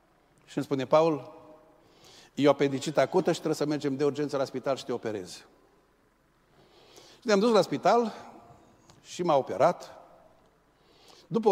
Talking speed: 145 wpm